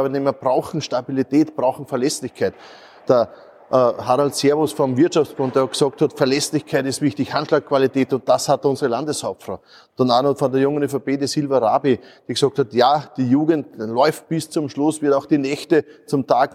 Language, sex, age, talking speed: German, male, 30-49, 175 wpm